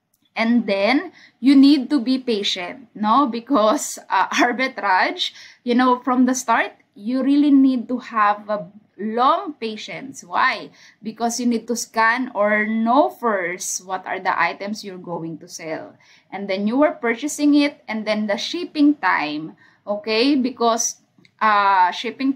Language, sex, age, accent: English, female, 20-39, Filipino